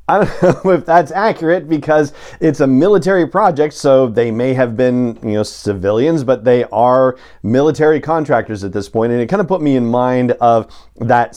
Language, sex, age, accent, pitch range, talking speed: English, male, 40-59, American, 115-140 Hz, 195 wpm